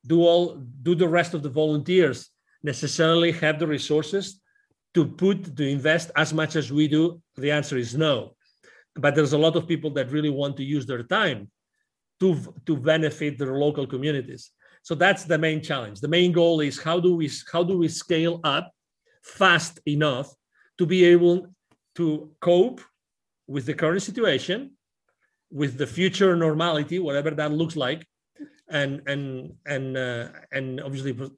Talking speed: 165 wpm